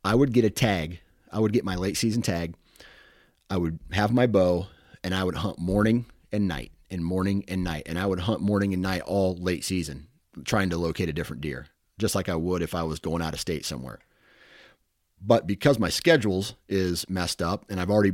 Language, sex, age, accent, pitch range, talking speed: English, male, 30-49, American, 90-110 Hz, 220 wpm